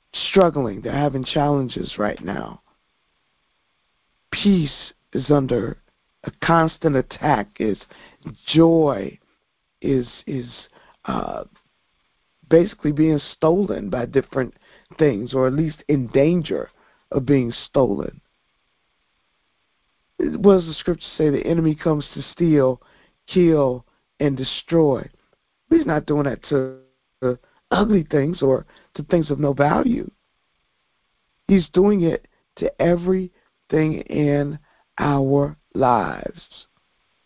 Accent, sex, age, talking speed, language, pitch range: American, male, 50-69, 105 wpm, English, 140-170 Hz